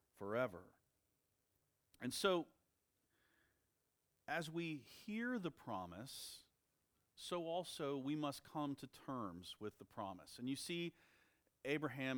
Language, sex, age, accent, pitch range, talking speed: English, male, 40-59, American, 115-155 Hz, 110 wpm